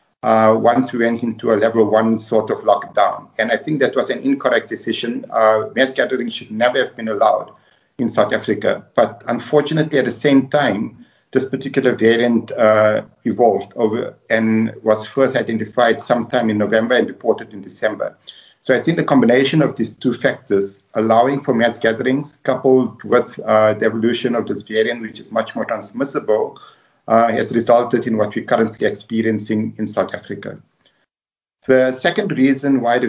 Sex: male